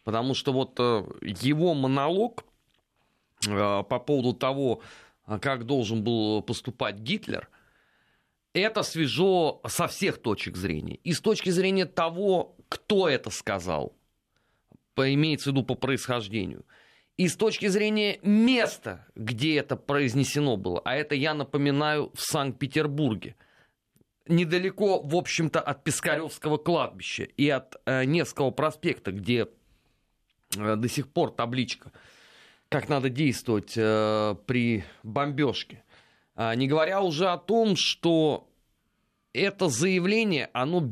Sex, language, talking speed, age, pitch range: male, Russian, 115 wpm, 30-49, 125-170 Hz